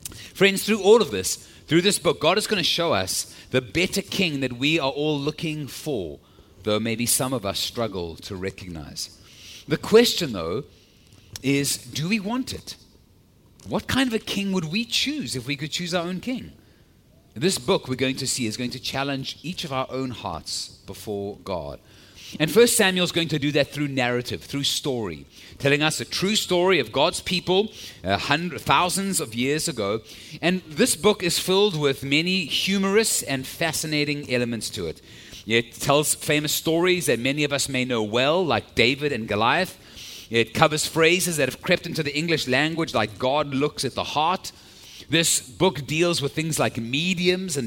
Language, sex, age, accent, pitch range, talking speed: English, male, 30-49, British, 115-175 Hz, 185 wpm